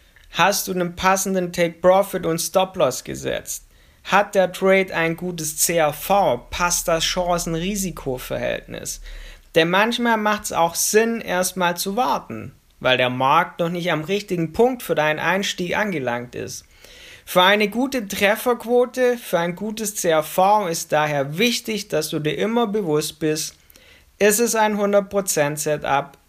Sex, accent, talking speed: male, German, 140 wpm